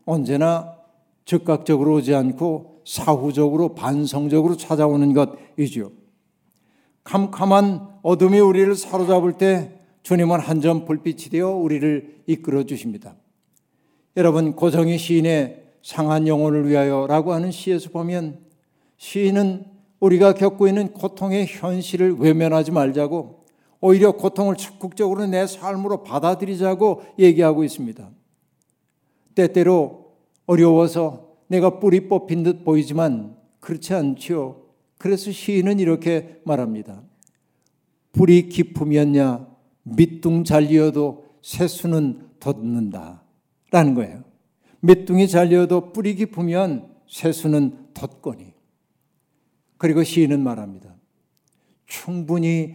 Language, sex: Korean, male